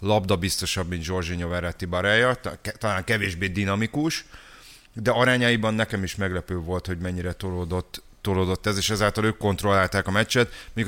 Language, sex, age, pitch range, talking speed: Hungarian, male, 30-49, 90-105 Hz, 150 wpm